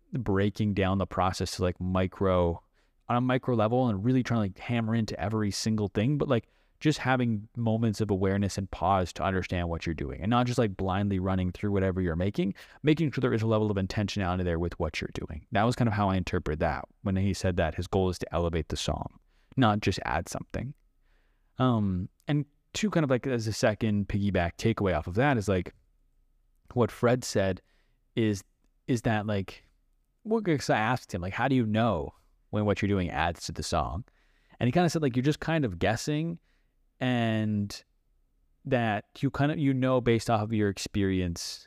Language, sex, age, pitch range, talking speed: English, male, 20-39, 95-130 Hz, 205 wpm